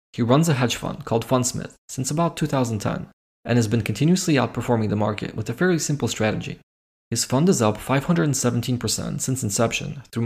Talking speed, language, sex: 175 wpm, English, male